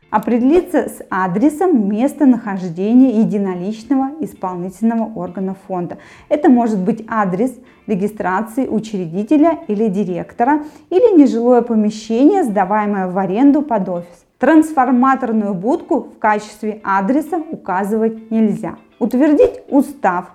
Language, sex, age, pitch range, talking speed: Russian, female, 20-39, 200-270 Hz, 95 wpm